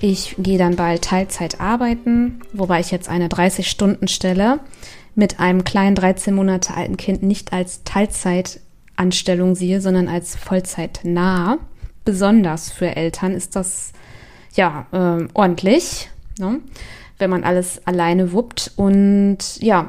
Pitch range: 180-220 Hz